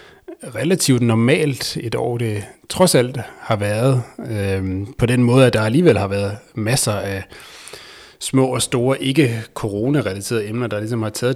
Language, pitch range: Danish, 105-130 Hz